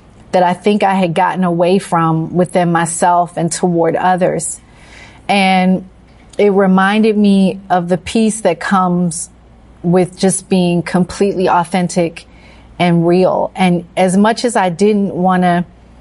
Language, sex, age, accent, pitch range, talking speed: English, female, 30-49, American, 180-200 Hz, 135 wpm